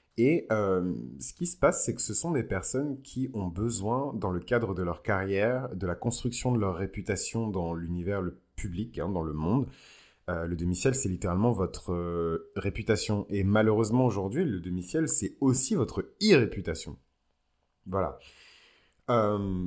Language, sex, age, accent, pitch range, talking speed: French, male, 30-49, French, 90-110 Hz, 170 wpm